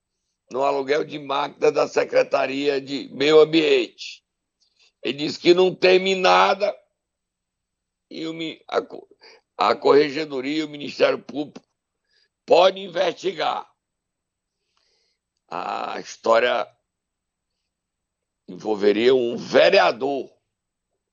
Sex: male